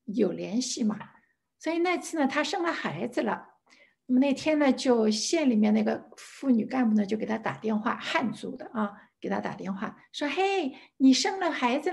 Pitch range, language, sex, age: 225-320 Hz, Chinese, female, 60-79